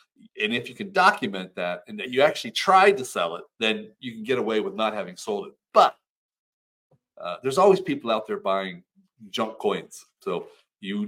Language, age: English, 40-59